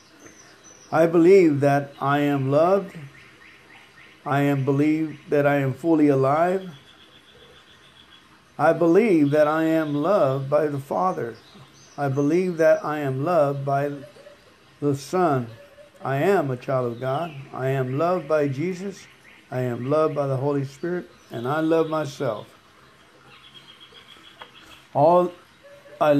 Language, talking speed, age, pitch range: English, 130 wpm, 50-69, 135-175 Hz